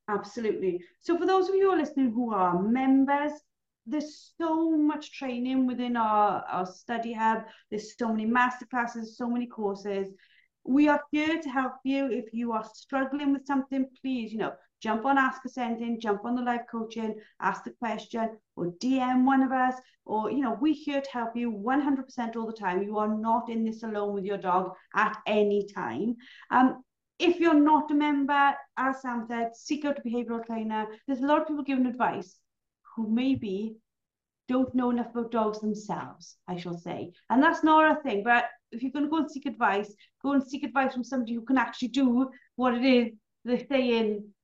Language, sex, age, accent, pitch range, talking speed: English, female, 30-49, British, 220-275 Hz, 195 wpm